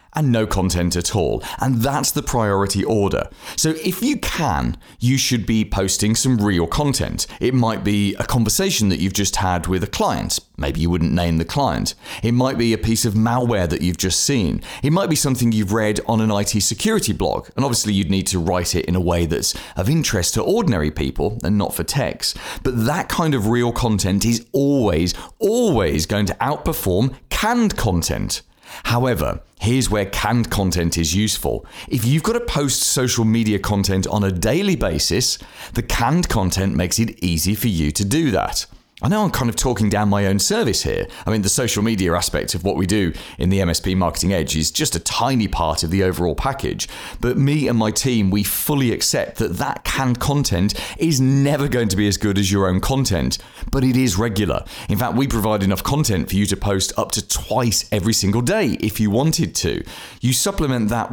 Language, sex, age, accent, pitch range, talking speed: English, male, 30-49, British, 95-125 Hz, 205 wpm